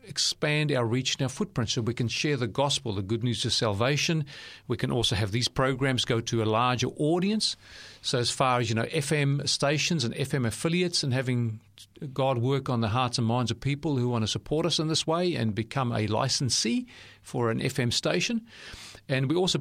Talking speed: 210 wpm